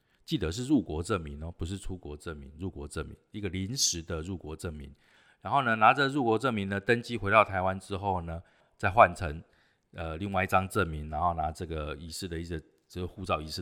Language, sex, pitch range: Chinese, male, 80-100 Hz